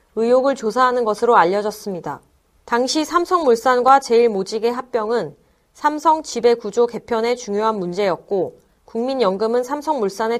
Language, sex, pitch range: Korean, female, 210-275 Hz